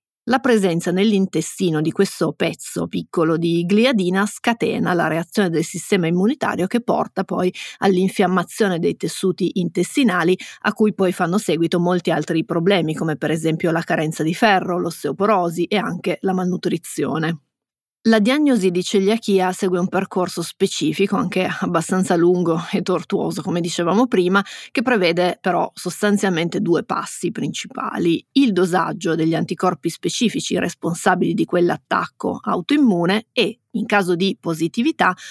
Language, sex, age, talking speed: Italian, female, 30-49, 135 wpm